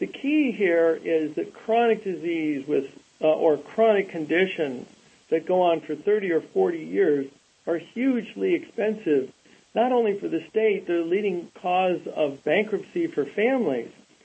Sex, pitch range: male, 155-205 Hz